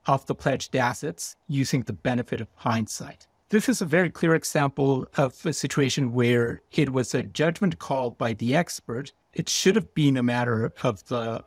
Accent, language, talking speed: American, English, 185 wpm